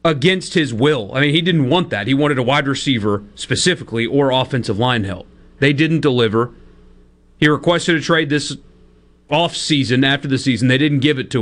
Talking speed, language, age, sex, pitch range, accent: 190 wpm, English, 40-59, male, 100-170 Hz, American